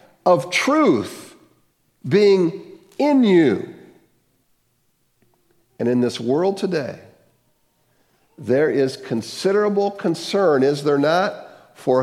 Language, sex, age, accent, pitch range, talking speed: English, male, 50-69, American, 145-205 Hz, 90 wpm